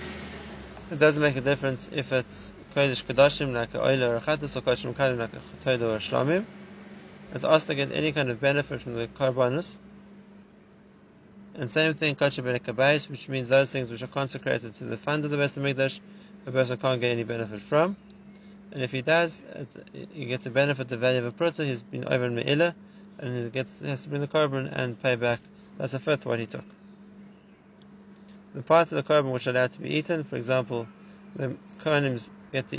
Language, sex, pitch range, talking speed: English, male, 130-200 Hz, 195 wpm